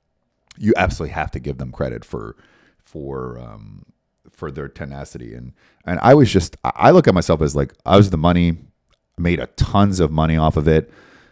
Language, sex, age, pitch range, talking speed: English, male, 30-49, 80-100 Hz, 190 wpm